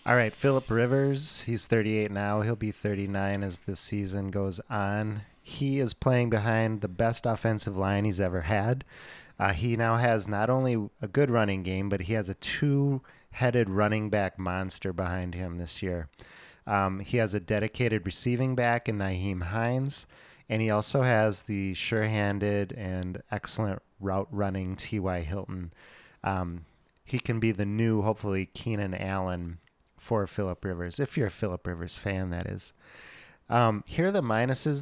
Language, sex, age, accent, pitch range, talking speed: English, male, 30-49, American, 95-120 Hz, 160 wpm